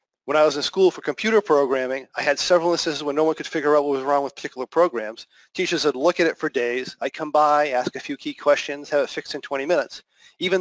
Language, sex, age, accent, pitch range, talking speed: English, male, 40-59, American, 140-180 Hz, 260 wpm